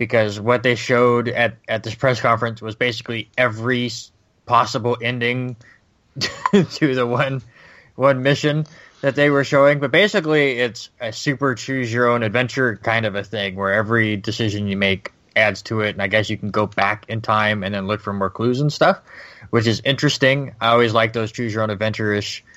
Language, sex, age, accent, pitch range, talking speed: English, male, 20-39, American, 105-125 Hz, 175 wpm